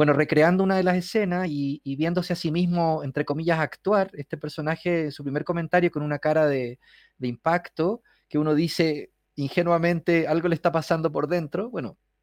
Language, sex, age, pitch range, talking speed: Spanish, male, 30-49, 135-165 Hz, 180 wpm